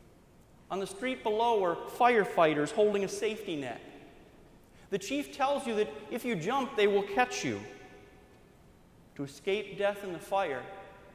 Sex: male